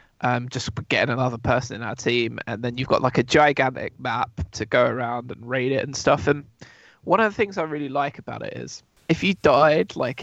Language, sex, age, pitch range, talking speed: English, male, 20-39, 120-140 Hz, 230 wpm